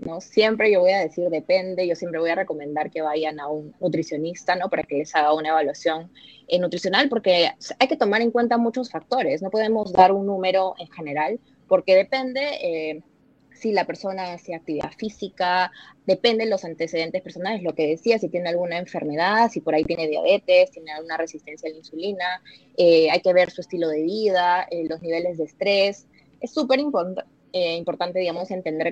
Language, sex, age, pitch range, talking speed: Spanish, female, 20-39, 160-205 Hz, 195 wpm